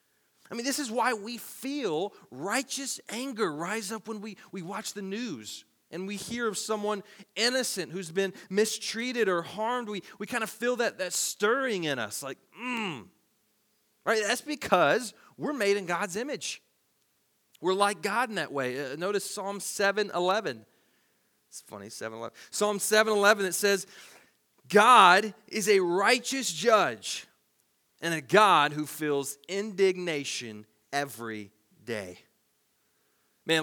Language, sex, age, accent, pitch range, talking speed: English, male, 30-49, American, 190-235 Hz, 140 wpm